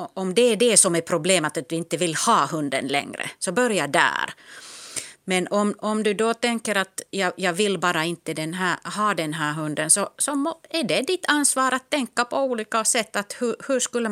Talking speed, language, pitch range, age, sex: 215 wpm, Swedish, 155-205 Hz, 30-49, female